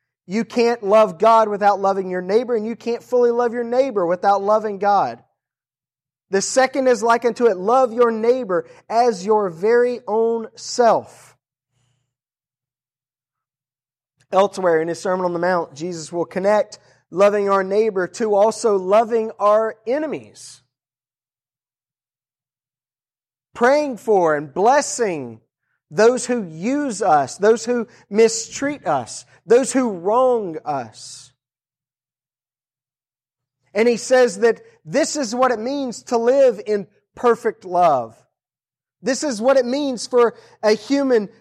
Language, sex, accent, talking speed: English, male, American, 130 wpm